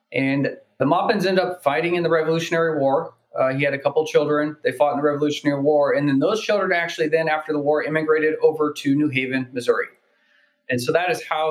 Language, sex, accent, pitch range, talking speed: English, male, American, 135-165 Hz, 220 wpm